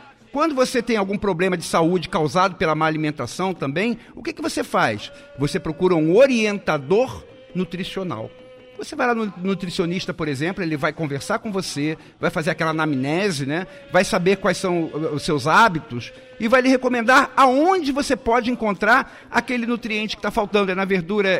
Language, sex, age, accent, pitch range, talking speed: Portuguese, male, 50-69, Brazilian, 155-215 Hz, 175 wpm